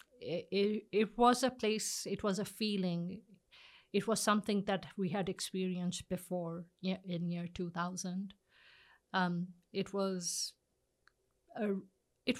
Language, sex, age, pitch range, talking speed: English, female, 50-69, 175-200 Hz, 120 wpm